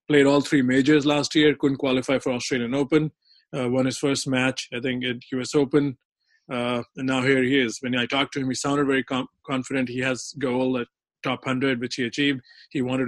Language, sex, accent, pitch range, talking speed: English, male, Indian, 125-140 Hz, 220 wpm